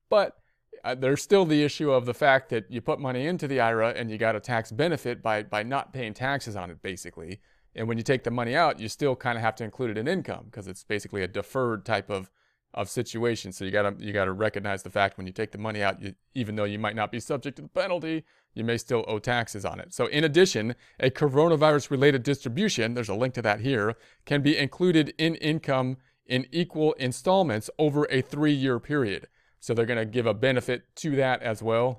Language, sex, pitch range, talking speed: English, male, 110-135 Hz, 230 wpm